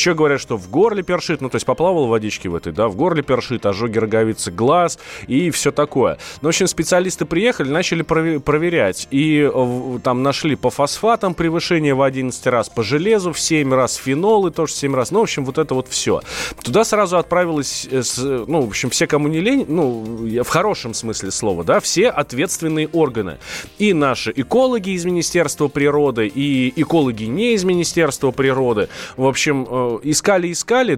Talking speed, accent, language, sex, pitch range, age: 180 wpm, native, Russian, male, 130-175 Hz, 30-49